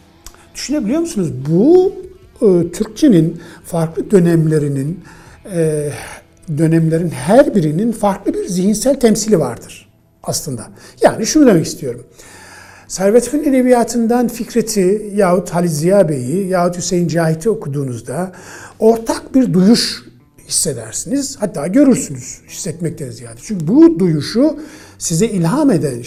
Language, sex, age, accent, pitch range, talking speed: Turkish, male, 60-79, native, 150-245 Hz, 105 wpm